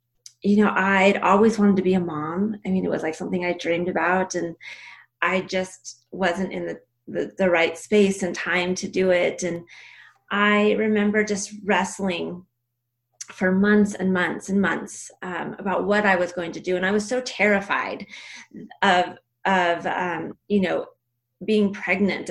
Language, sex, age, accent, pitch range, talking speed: English, female, 30-49, American, 170-200 Hz, 170 wpm